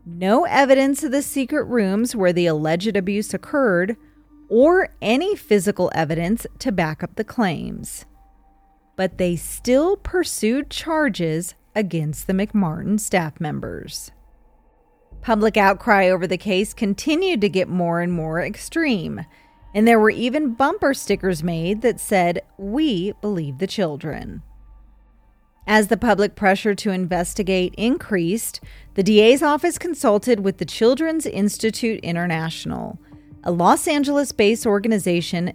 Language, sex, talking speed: English, female, 130 wpm